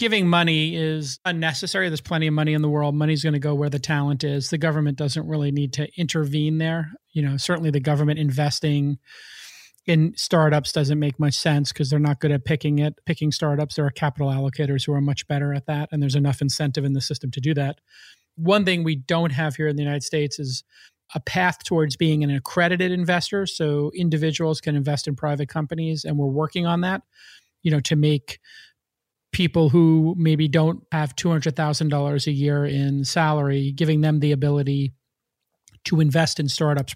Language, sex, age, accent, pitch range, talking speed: English, male, 40-59, American, 145-160 Hz, 195 wpm